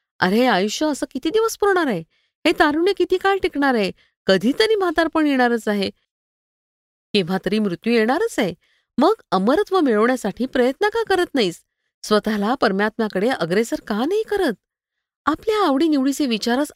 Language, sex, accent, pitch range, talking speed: Marathi, female, native, 195-280 Hz, 135 wpm